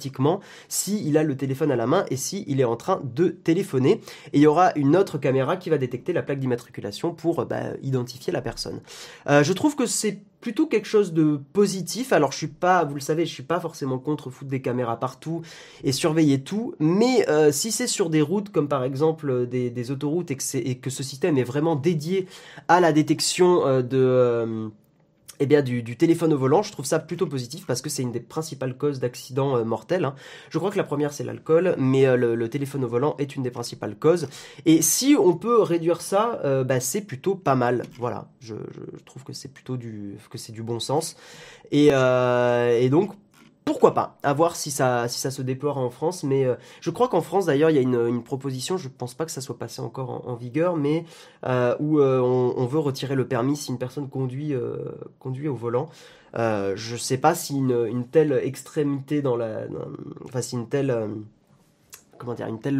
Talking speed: 230 wpm